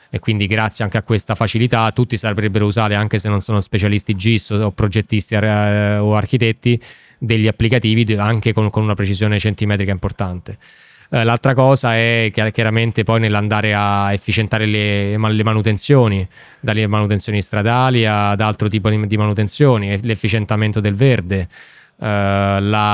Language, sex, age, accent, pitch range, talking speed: Italian, male, 20-39, native, 105-115 Hz, 130 wpm